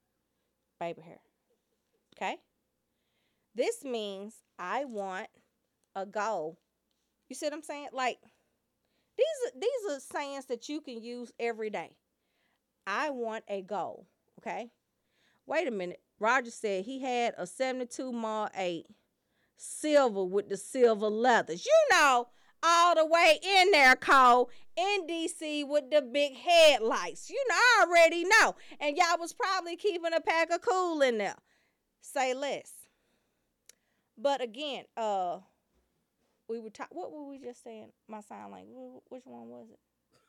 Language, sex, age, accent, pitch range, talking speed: English, female, 40-59, American, 215-305 Hz, 145 wpm